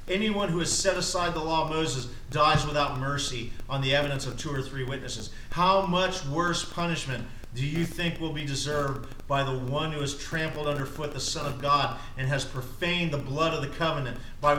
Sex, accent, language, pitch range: male, American, English, 140-220 Hz